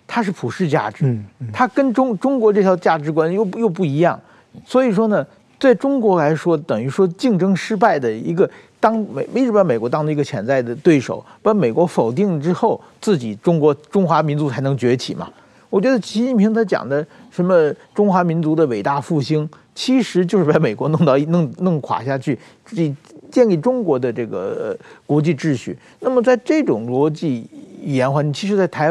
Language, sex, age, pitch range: Chinese, male, 50-69, 145-225 Hz